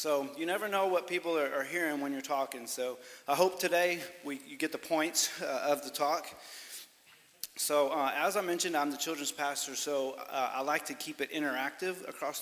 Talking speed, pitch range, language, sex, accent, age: 195 wpm, 135-170 Hz, English, male, American, 30-49